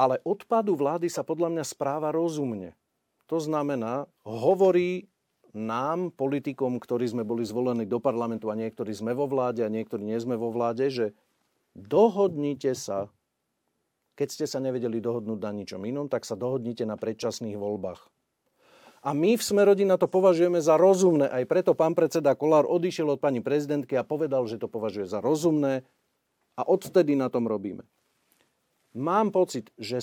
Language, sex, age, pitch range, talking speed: Slovak, male, 40-59, 120-160 Hz, 160 wpm